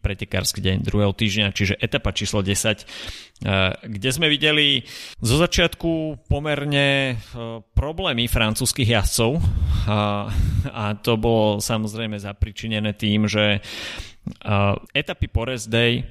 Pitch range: 95-110 Hz